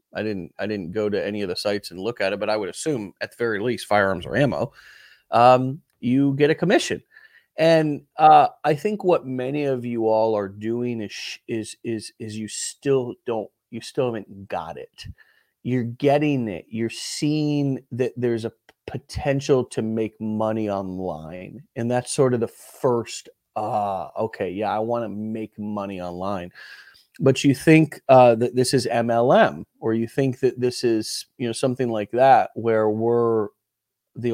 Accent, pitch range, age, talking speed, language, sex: American, 105-140 Hz, 30-49, 185 wpm, English, male